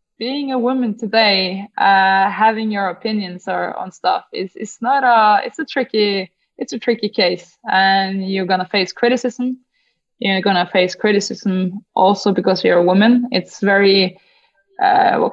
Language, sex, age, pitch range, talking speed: English, female, 20-39, 190-225 Hz, 155 wpm